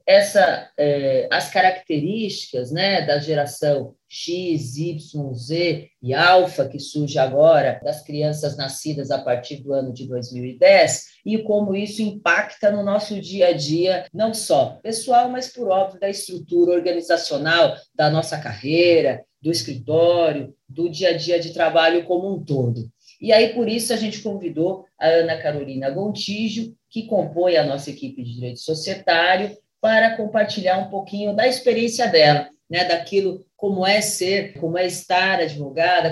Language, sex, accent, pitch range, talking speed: Portuguese, female, Brazilian, 155-200 Hz, 150 wpm